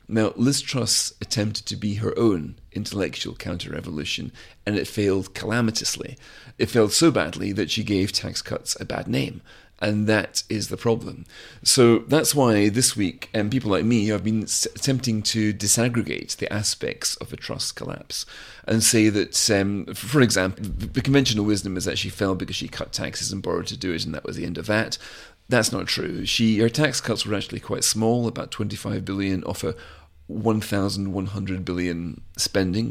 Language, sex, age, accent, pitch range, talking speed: English, male, 40-59, British, 95-115 Hz, 180 wpm